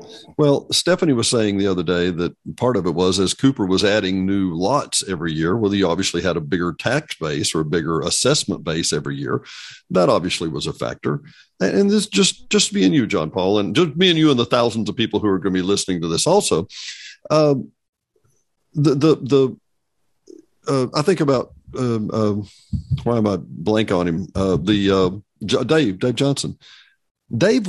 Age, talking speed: 50-69, 195 wpm